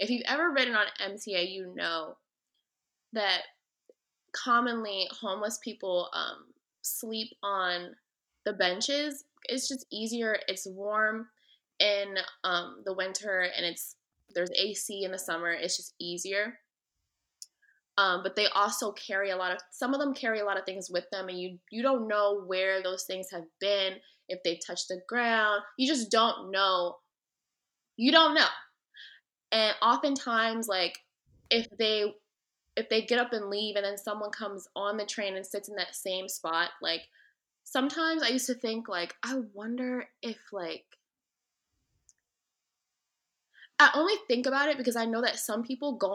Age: 20-39